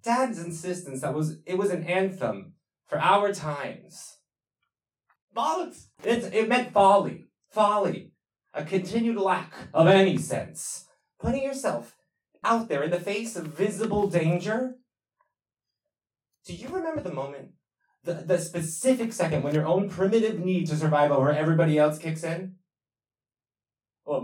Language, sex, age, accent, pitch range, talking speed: English, male, 30-49, American, 145-215 Hz, 135 wpm